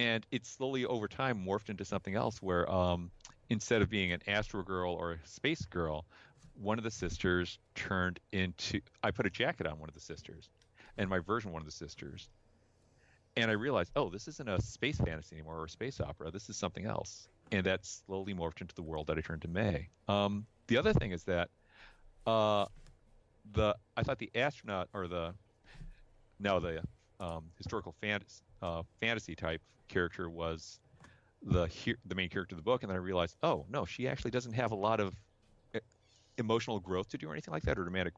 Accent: American